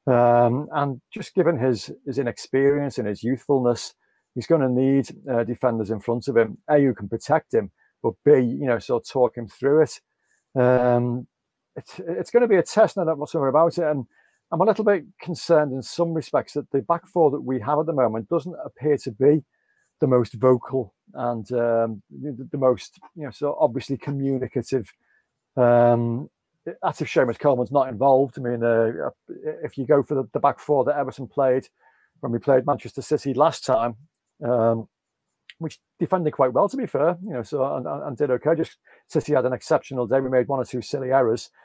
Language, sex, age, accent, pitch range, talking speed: English, male, 40-59, British, 125-150 Hz, 200 wpm